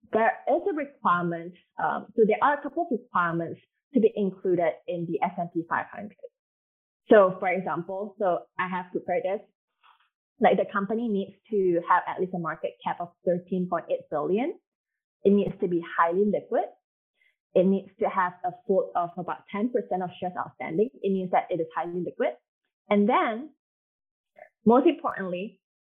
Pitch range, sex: 180-240 Hz, female